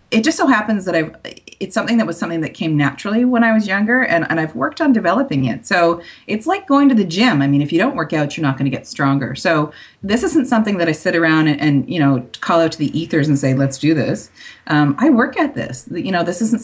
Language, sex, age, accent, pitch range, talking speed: English, female, 40-59, American, 140-190 Hz, 275 wpm